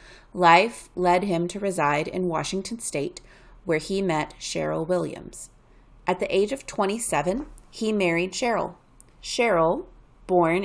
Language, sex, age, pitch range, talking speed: English, female, 30-49, 160-190 Hz, 130 wpm